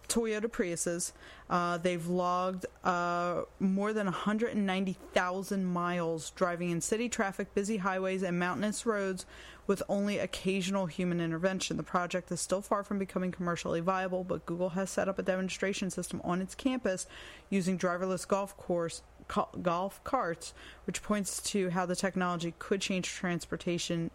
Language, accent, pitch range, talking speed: English, American, 170-195 Hz, 145 wpm